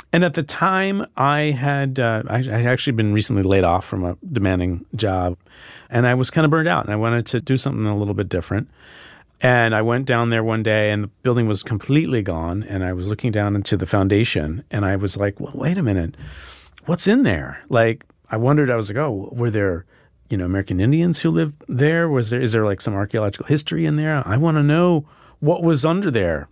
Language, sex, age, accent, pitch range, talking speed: English, male, 40-59, American, 105-145 Hz, 230 wpm